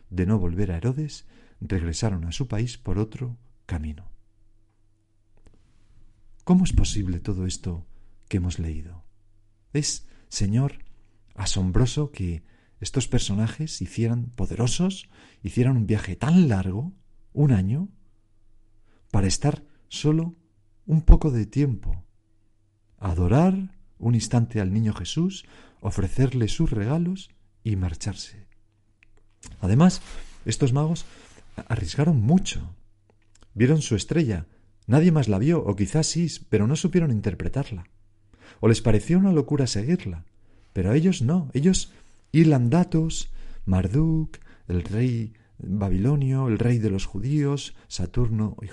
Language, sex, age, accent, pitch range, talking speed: Spanish, male, 50-69, Spanish, 100-140 Hz, 115 wpm